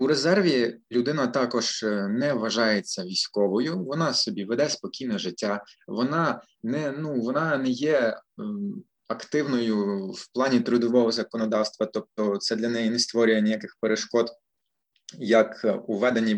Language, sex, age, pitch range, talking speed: Ukrainian, male, 20-39, 110-135 Hz, 125 wpm